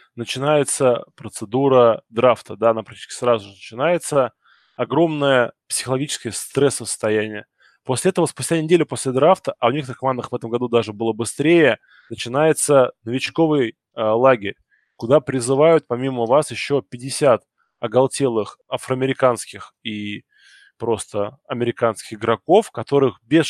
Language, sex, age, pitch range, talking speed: Russian, male, 20-39, 120-145 Hz, 120 wpm